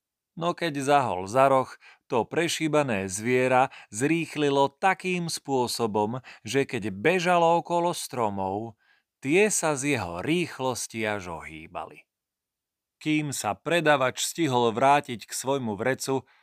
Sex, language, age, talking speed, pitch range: male, Slovak, 40-59, 115 wpm, 115-170 Hz